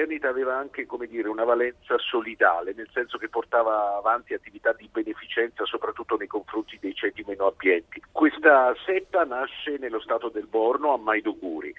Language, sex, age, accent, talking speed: Italian, male, 50-69, native, 170 wpm